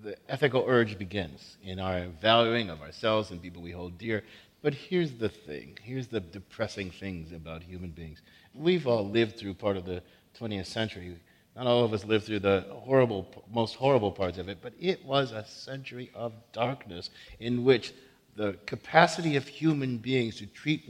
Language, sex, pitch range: English, male, 100-145 Hz